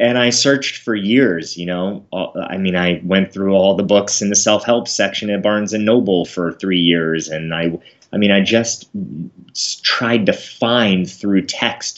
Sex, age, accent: male, 30-49, American